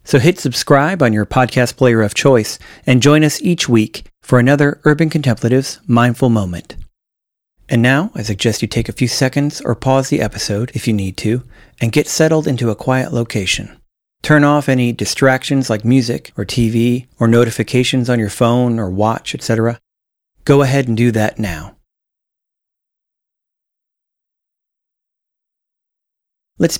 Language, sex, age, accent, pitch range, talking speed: English, male, 40-59, American, 110-135 Hz, 150 wpm